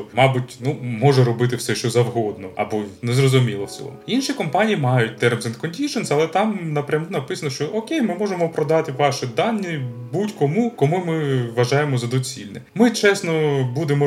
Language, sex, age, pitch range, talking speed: Ukrainian, male, 20-39, 110-145 Hz, 150 wpm